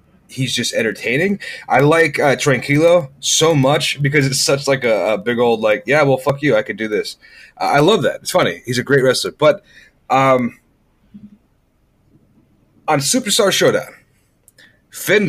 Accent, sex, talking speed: American, male, 165 wpm